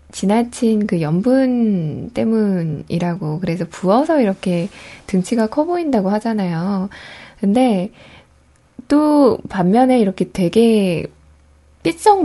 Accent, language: native, Korean